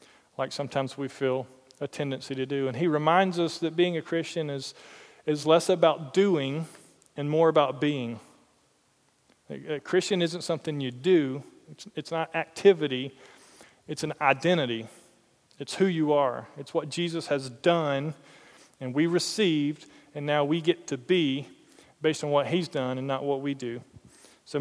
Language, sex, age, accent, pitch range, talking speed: English, male, 40-59, American, 140-170 Hz, 165 wpm